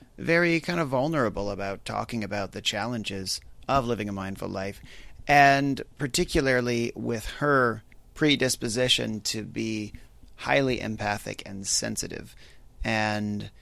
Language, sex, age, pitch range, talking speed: English, male, 30-49, 105-125 Hz, 115 wpm